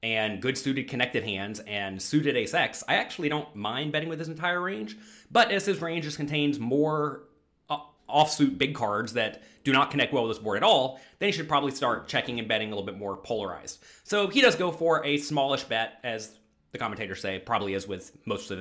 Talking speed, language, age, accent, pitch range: 215 wpm, English, 30-49, American, 130-195 Hz